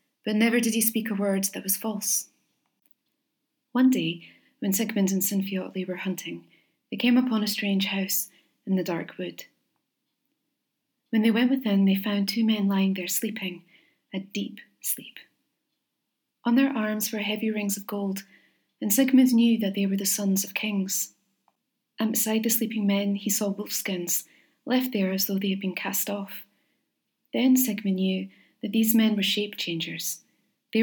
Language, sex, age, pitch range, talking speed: English, female, 30-49, 195-225 Hz, 170 wpm